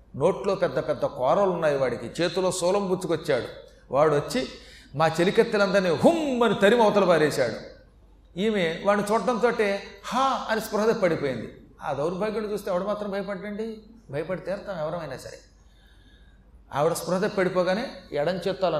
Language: Telugu